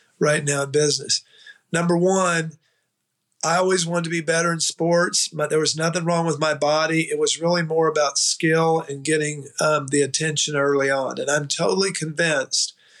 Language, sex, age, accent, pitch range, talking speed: English, male, 50-69, American, 145-170 Hz, 180 wpm